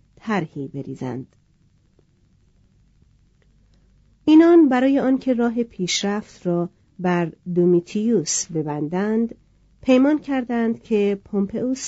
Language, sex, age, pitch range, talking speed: Persian, female, 40-59, 165-230 Hz, 75 wpm